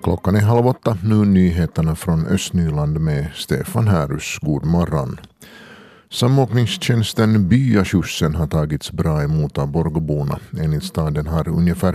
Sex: male